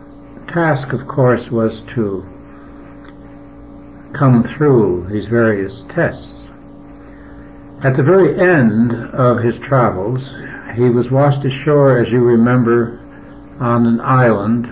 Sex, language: male, English